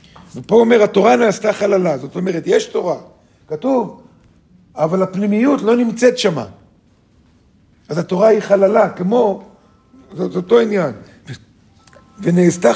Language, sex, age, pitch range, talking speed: Hebrew, male, 50-69, 145-210 Hz, 120 wpm